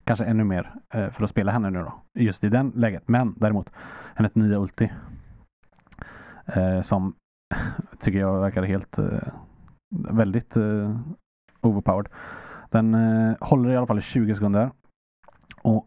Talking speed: 130 wpm